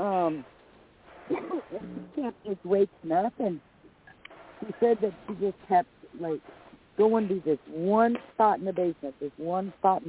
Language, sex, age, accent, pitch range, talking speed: English, female, 50-69, American, 155-200 Hz, 145 wpm